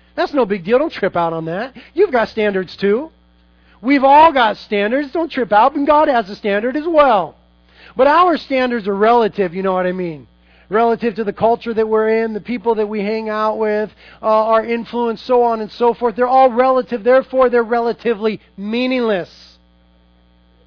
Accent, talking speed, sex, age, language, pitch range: American, 190 wpm, male, 40-59, English, 140-235 Hz